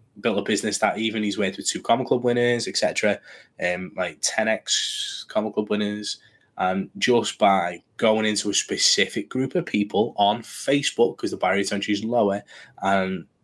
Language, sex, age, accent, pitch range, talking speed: English, male, 20-39, British, 100-110 Hz, 185 wpm